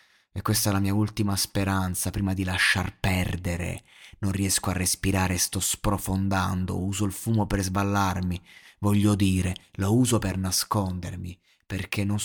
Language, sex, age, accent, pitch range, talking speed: Italian, male, 20-39, native, 100-120 Hz, 145 wpm